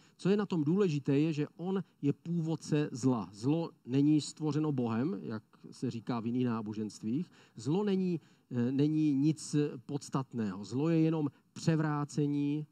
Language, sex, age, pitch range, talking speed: Czech, male, 40-59, 130-155 Hz, 140 wpm